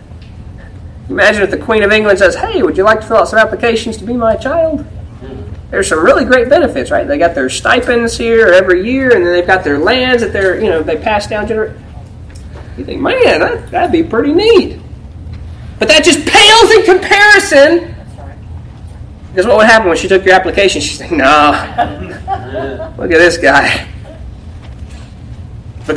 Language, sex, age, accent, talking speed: English, male, 30-49, American, 185 wpm